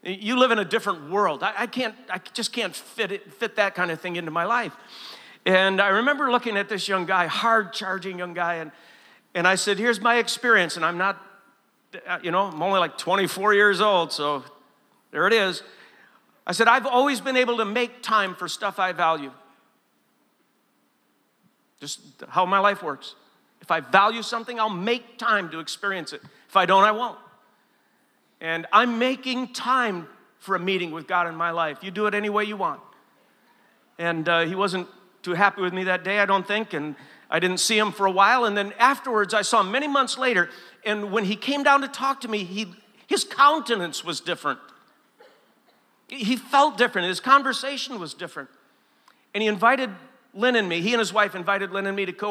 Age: 50-69